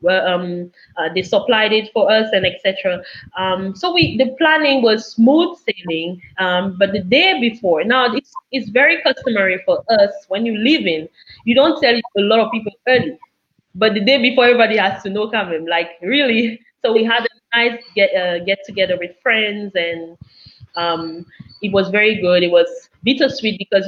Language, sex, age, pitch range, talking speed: English, female, 20-39, 185-245 Hz, 190 wpm